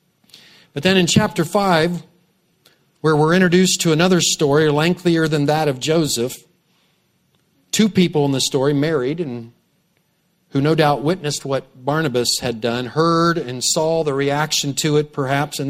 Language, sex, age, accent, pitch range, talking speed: English, male, 40-59, American, 140-180 Hz, 155 wpm